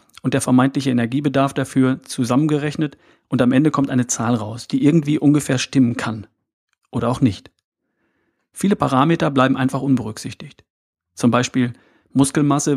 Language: German